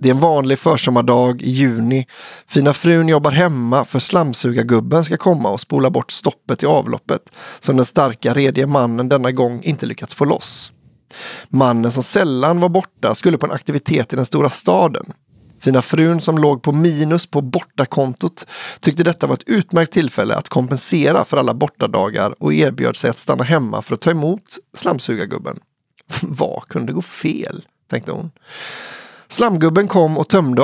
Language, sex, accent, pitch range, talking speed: English, male, Swedish, 130-170 Hz, 170 wpm